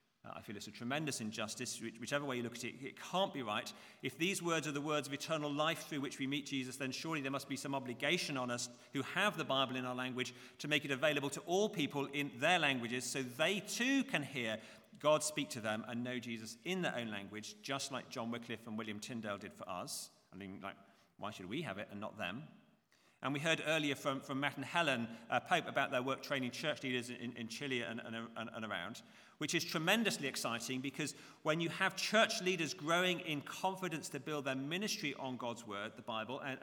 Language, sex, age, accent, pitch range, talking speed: English, male, 40-59, British, 120-155 Hz, 235 wpm